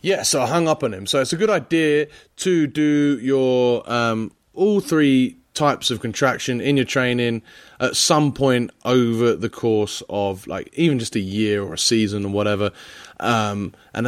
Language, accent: English, British